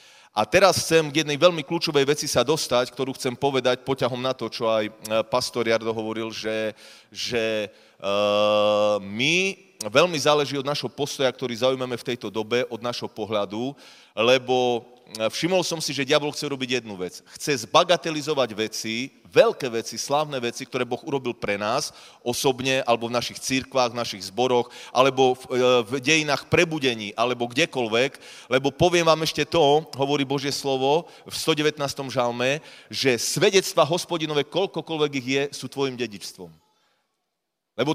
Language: Slovak